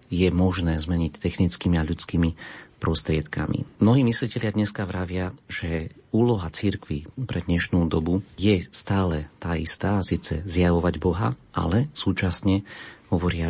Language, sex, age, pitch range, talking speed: Slovak, male, 40-59, 85-100 Hz, 120 wpm